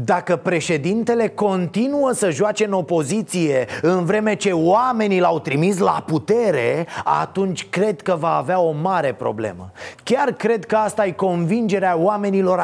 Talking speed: 140 wpm